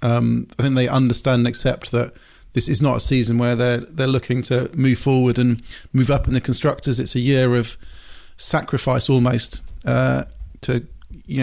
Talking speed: 185 wpm